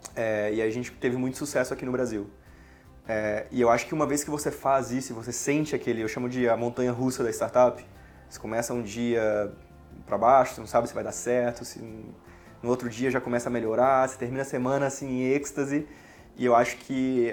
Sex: male